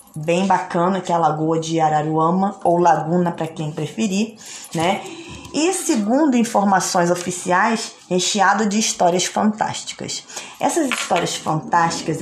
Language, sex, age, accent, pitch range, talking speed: Portuguese, female, 20-39, Brazilian, 175-230 Hz, 125 wpm